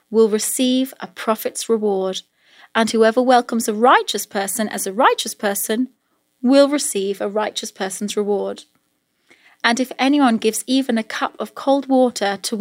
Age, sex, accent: 30-49, female, British